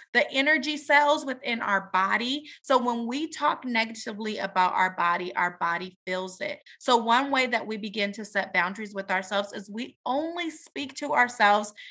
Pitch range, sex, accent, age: 205-255 Hz, female, American, 30-49